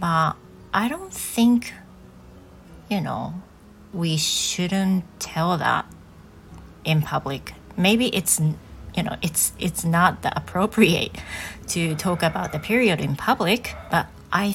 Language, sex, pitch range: Japanese, female, 155-195 Hz